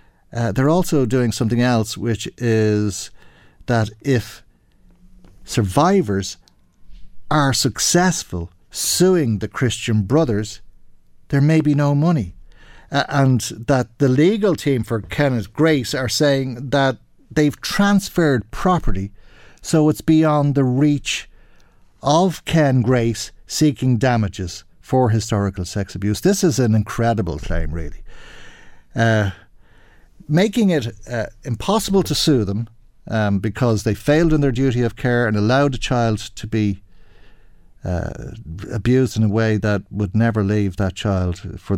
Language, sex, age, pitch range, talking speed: English, male, 50-69, 105-135 Hz, 130 wpm